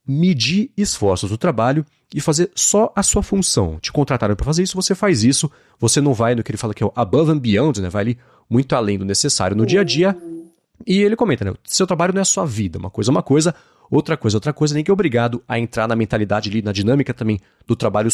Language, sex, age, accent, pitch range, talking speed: Portuguese, male, 30-49, Brazilian, 105-155 Hz, 255 wpm